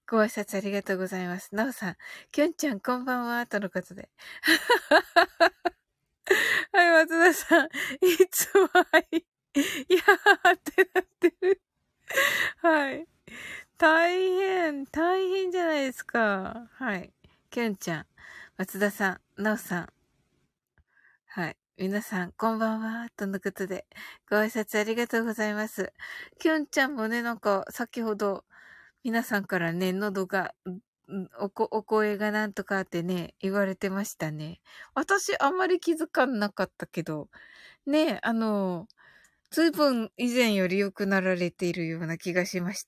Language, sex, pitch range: Japanese, female, 195-315 Hz